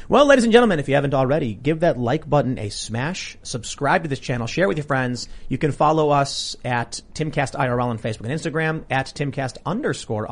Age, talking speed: 30-49, 205 wpm